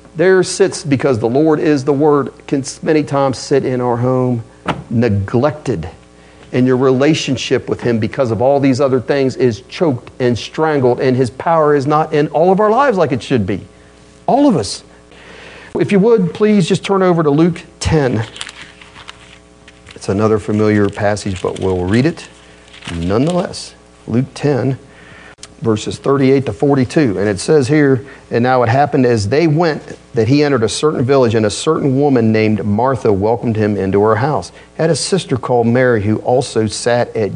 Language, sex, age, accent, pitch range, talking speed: English, male, 40-59, American, 105-140 Hz, 175 wpm